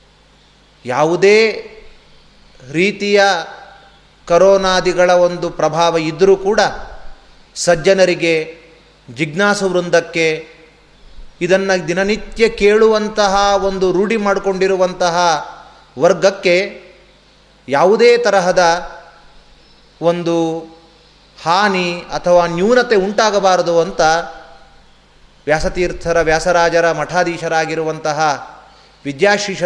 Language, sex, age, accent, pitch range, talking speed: Kannada, male, 30-49, native, 155-190 Hz, 60 wpm